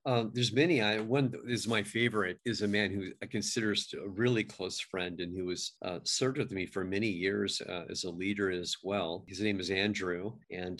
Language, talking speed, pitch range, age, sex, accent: English, 215 wpm, 95-110 Hz, 40-59, male, American